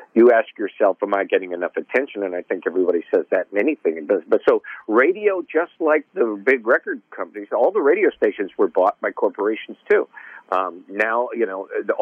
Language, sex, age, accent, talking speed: English, male, 50-69, American, 195 wpm